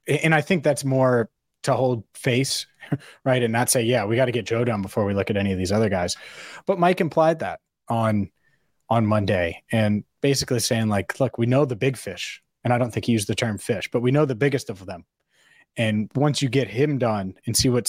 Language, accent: English, American